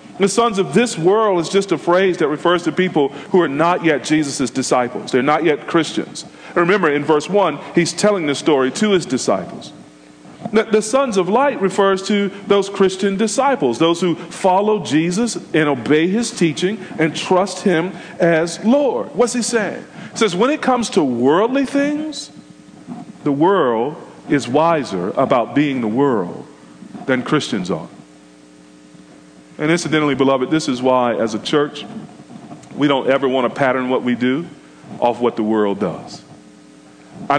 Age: 40-59